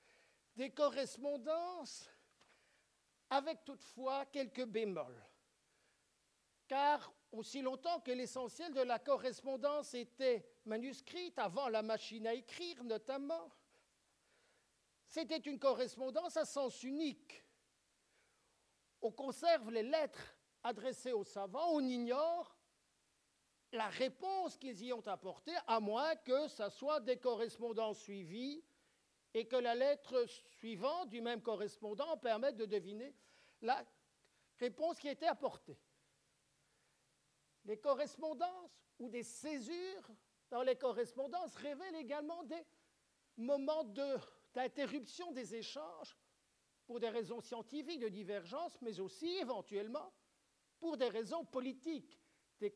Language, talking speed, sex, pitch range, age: French, 110 wpm, male, 225-300 Hz, 50-69